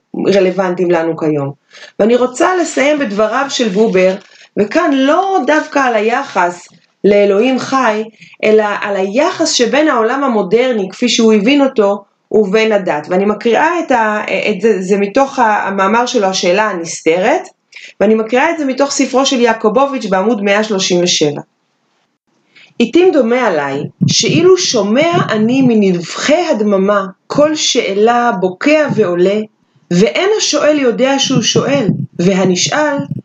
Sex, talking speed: female, 125 wpm